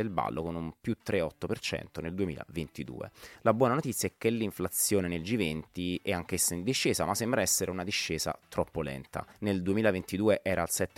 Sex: male